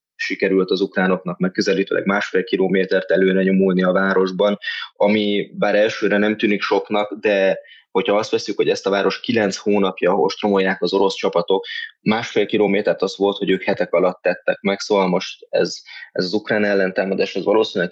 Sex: male